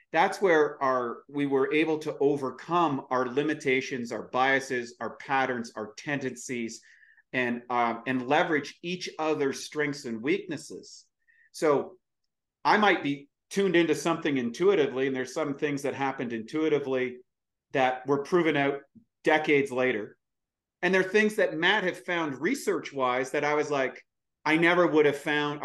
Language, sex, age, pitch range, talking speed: English, male, 40-59, 135-180 Hz, 150 wpm